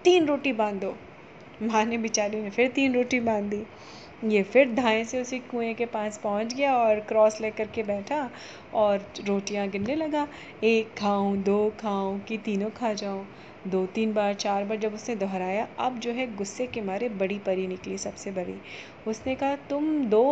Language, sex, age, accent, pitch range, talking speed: Hindi, female, 30-49, native, 210-265 Hz, 185 wpm